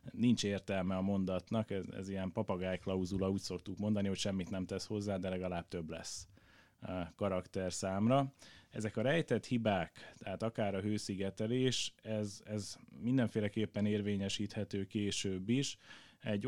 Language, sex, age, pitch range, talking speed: Hungarian, male, 30-49, 95-110 Hz, 140 wpm